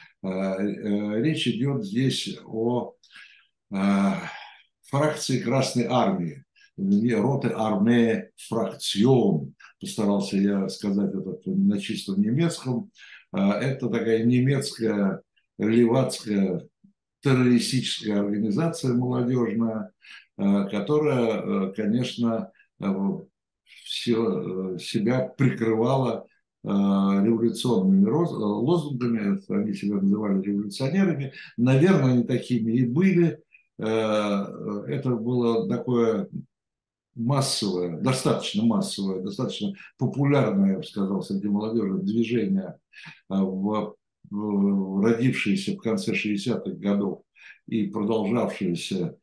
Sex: male